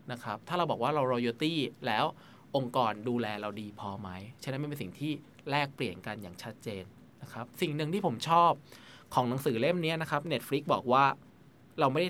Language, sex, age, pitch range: Thai, male, 20-39, 115-150 Hz